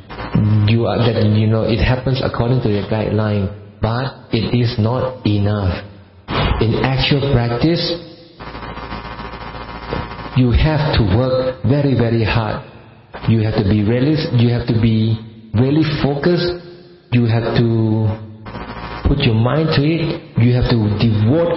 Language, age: Thai, 50-69